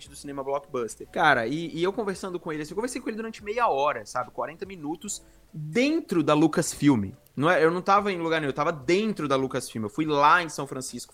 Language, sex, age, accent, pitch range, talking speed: Portuguese, male, 20-39, Brazilian, 125-165 Hz, 230 wpm